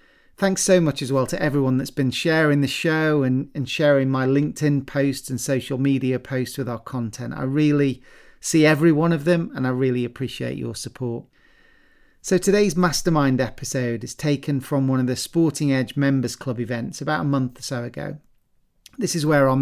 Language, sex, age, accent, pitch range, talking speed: English, male, 40-59, British, 130-155 Hz, 195 wpm